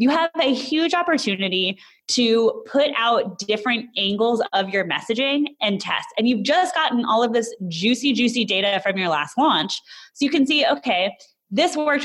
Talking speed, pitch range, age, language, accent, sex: 180 wpm, 185-245 Hz, 20-39, English, American, female